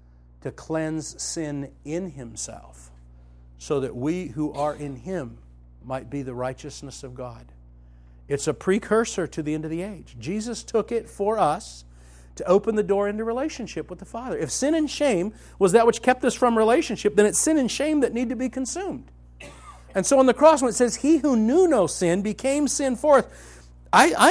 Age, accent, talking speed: 50-69, American, 195 wpm